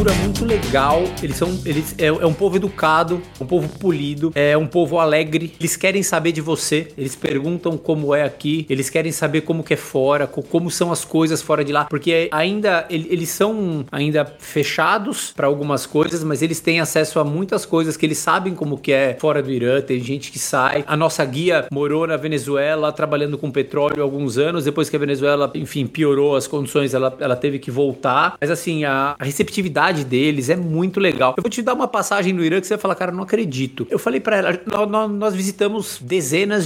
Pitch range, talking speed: 145-185 Hz, 205 wpm